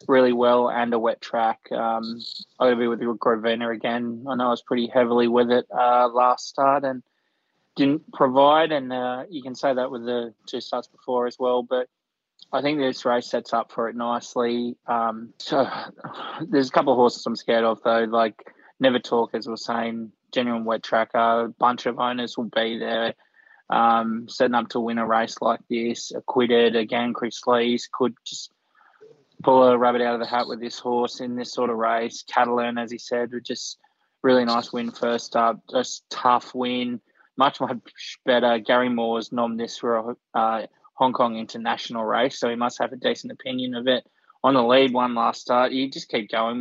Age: 20-39